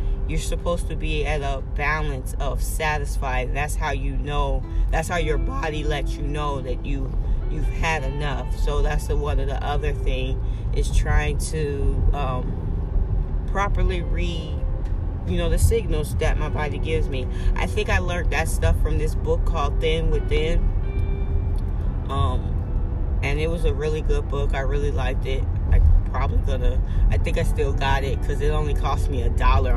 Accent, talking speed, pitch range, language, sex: American, 175 wpm, 75-90 Hz, English, female